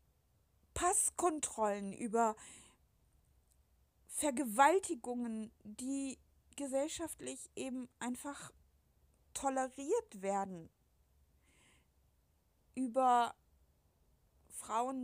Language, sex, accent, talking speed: German, female, German, 45 wpm